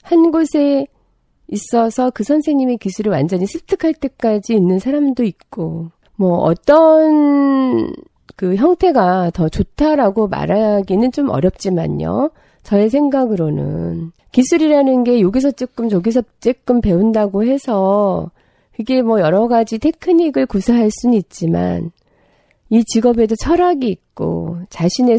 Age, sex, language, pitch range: 40-59, female, Korean, 190-280 Hz